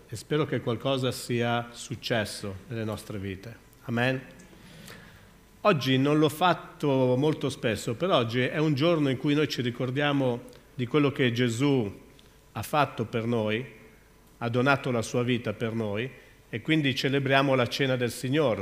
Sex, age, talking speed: male, 50-69, 155 wpm